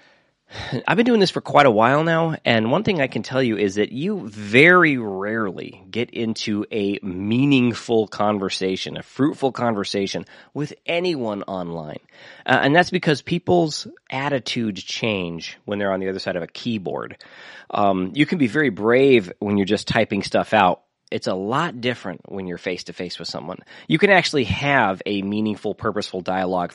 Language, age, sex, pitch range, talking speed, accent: English, 30-49, male, 95-125 Hz, 175 wpm, American